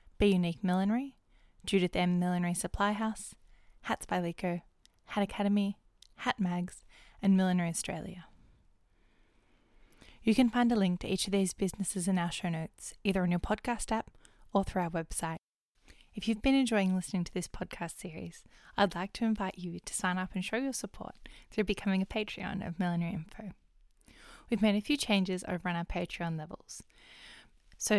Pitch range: 180-210 Hz